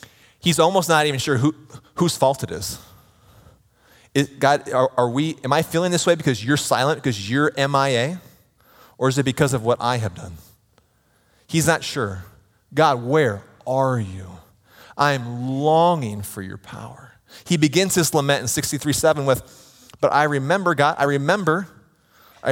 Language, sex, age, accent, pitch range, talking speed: English, male, 30-49, American, 110-150 Hz, 165 wpm